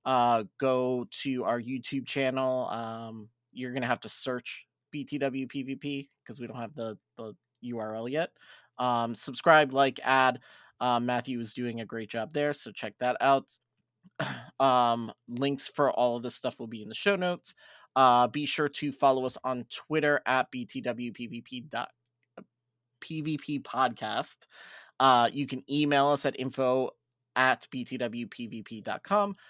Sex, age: male, 20-39